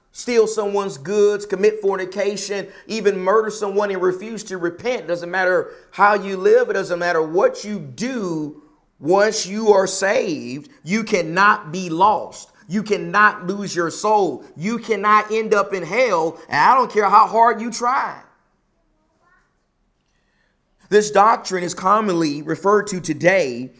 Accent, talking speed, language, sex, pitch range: American, 140 wpm, English, male, 160-205 Hz